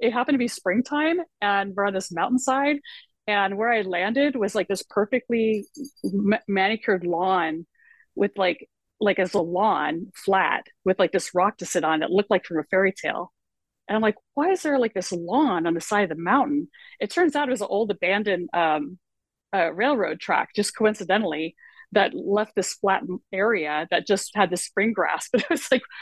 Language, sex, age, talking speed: English, female, 30-49, 200 wpm